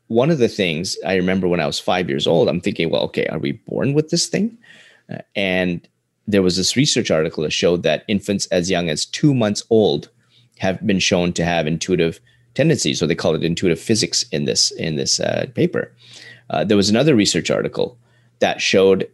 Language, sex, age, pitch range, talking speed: English, male, 30-49, 95-120 Hz, 205 wpm